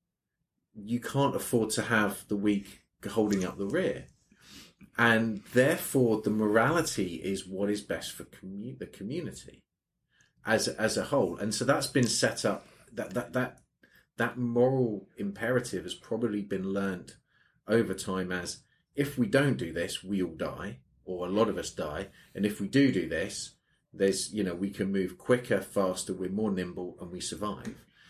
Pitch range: 95-115 Hz